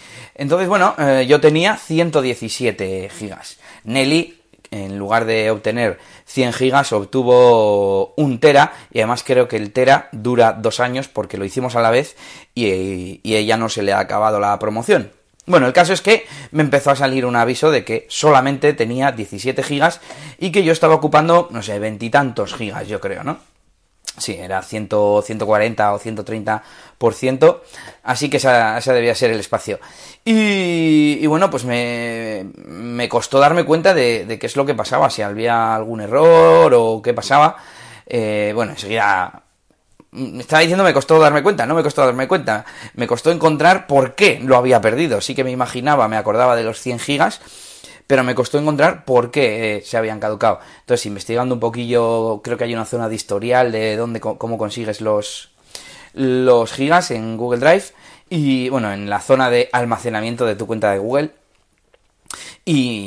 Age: 20-39